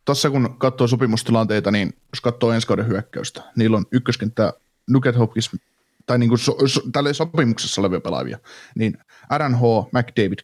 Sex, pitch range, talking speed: male, 110-130 Hz, 150 wpm